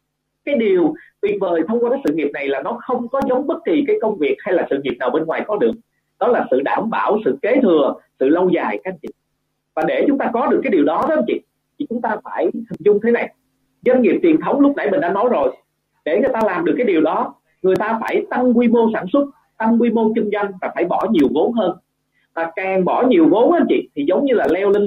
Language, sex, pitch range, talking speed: Vietnamese, male, 185-275 Hz, 275 wpm